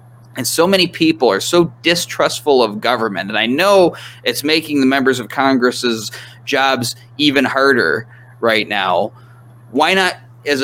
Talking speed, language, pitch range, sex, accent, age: 145 wpm, English, 120-150 Hz, male, American, 20-39